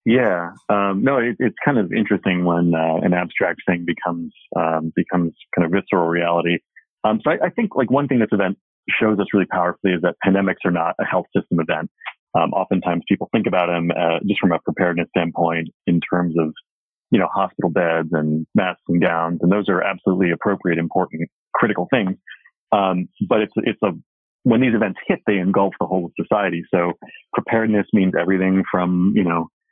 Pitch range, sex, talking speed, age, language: 85-105 Hz, male, 195 wpm, 30-49, English